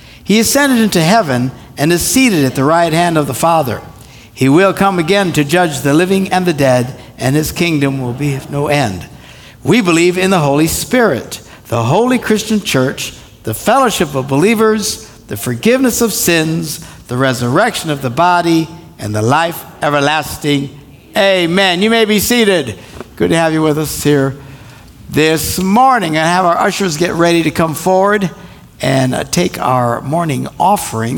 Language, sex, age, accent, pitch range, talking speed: English, male, 60-79, American, 130-185 Hz, 170 wpm